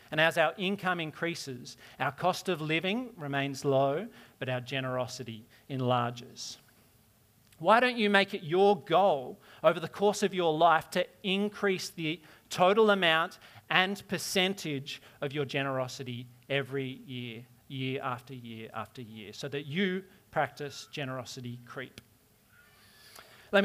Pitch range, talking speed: 130-175 Hz, 130 wpm